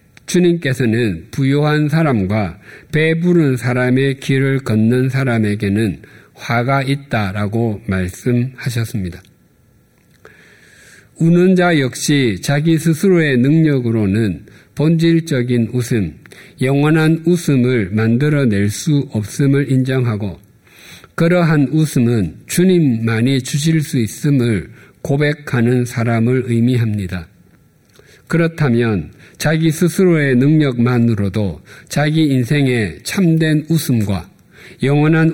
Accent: native